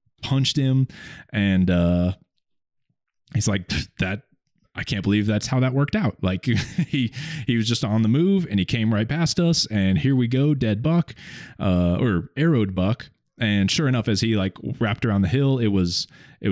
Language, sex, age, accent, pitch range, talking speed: English, male, 20-39, American, 95-130 Hz, 190 wpm